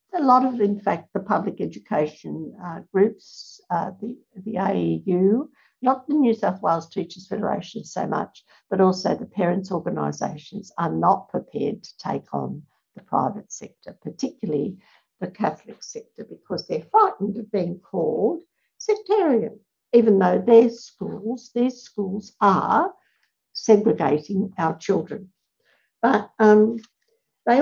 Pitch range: 185-235 Hz